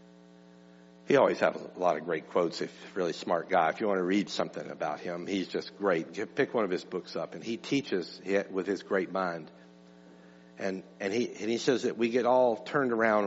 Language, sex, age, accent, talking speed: English, male, 60-79, American, 215 wpm